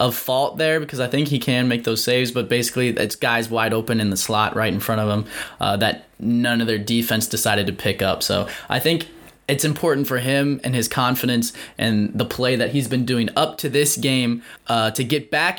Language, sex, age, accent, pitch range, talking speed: English, male, 20-39, American, 110-130 Hz, 230 wpm